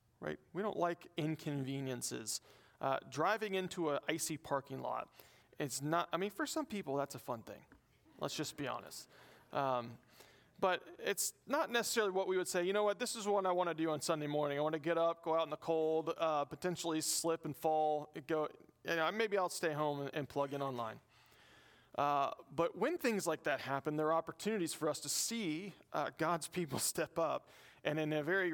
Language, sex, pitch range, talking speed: English, male, 150-200 Hz, 210 wpm